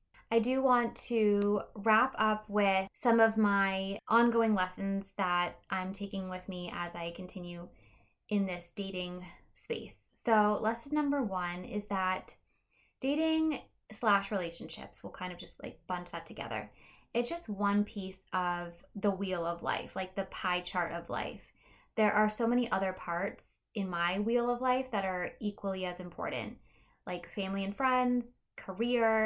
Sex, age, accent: female, 20-39, American